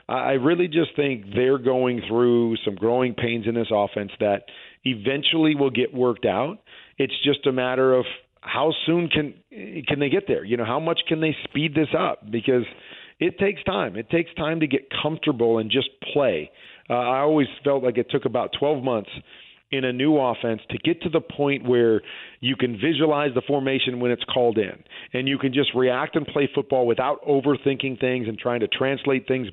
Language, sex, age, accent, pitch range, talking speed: English, male, 40-59, American, 120-145 Hz, 200 wpm